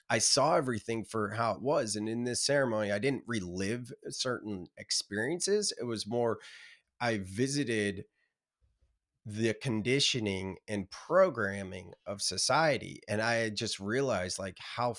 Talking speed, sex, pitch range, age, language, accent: 135 wpm, male, 100-125 Hz, 30-49, English, American